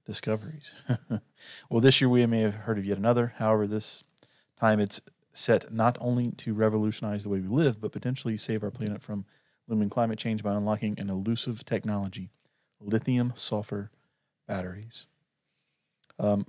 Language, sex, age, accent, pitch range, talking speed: English, male, 30-49, American, 100-120 Hz, 150 wpm